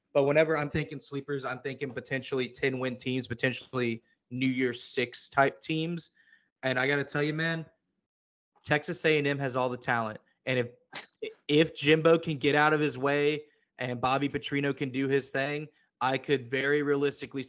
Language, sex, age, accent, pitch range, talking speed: English, male, 20-39, American, 125-150 Hz, 170 wpm